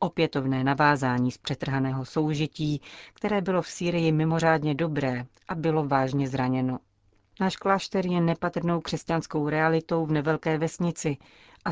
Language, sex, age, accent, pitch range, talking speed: Czech, female, 40-59, native, 145-170 Hz, 130 wpm